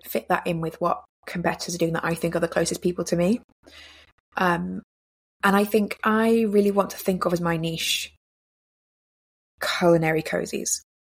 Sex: female